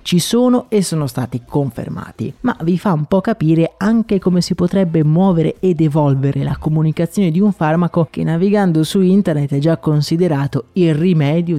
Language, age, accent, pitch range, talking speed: Italian, 30-49, native, 150-200 Hz, 170 wpm